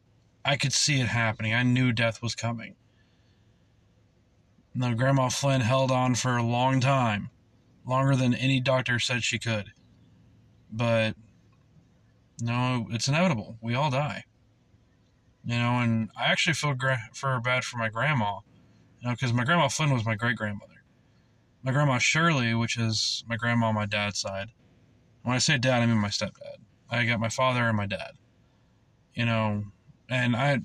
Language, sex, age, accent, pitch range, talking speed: English, male, 20-39, American, 115-135 Hz, 170 wpm